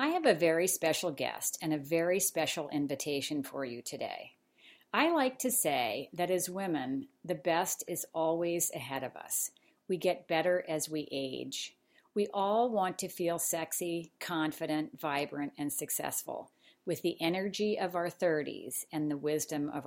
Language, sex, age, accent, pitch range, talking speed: English, female, 50-69, American, 155-190 Hz, 165 wpm